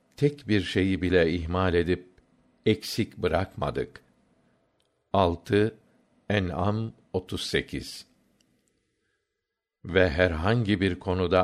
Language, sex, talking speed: Turkish, male, 80 wpm